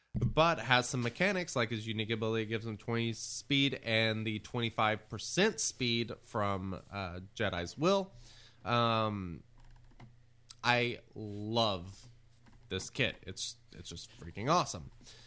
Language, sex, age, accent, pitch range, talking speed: English, male, 20-39, American, 115-165 Hz, 120 wpm